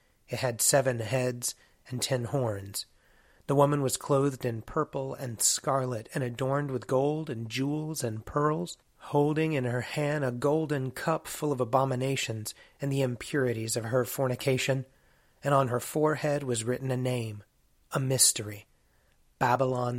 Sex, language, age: male, English, 30-49